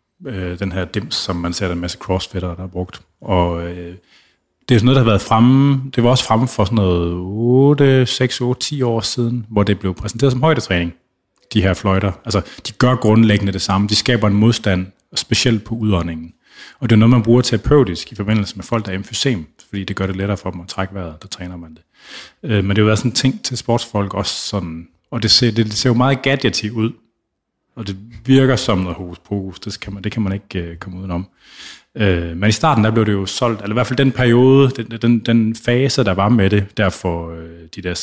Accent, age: native, 30-49